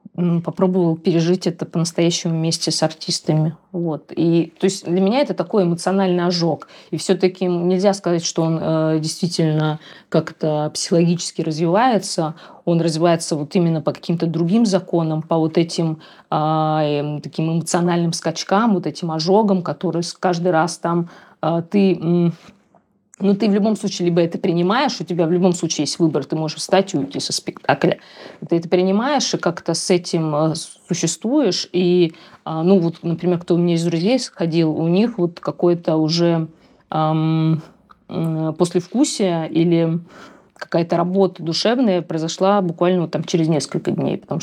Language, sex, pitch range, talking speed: Russian, female, 160-185 Hz, 150 wpm